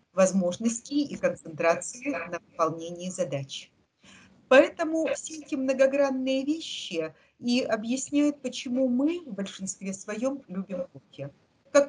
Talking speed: 105 wpm